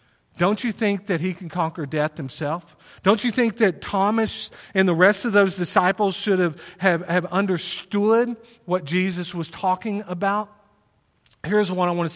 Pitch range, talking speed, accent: 155-205 Hz, 175 wpm, American